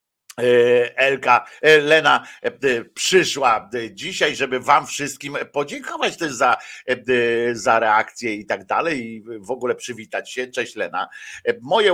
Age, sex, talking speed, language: 50-69, male, 115 wpm, Polish